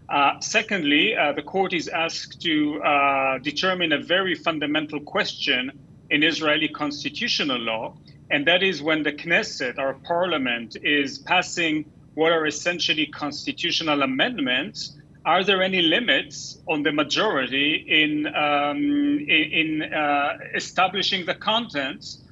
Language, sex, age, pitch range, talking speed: English, male, 40-59, 150-185 Hz, 130 wpm